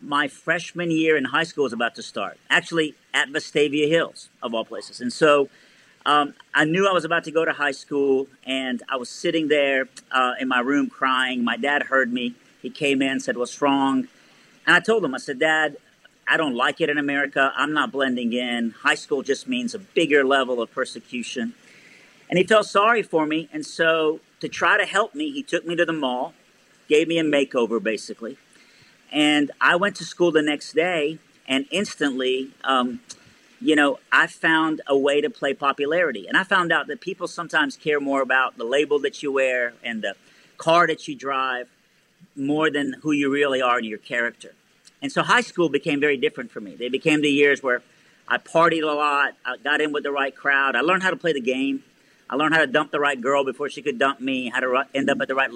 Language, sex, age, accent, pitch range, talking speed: English, male, 50-69, American, 135-170 Hz, 220 wpm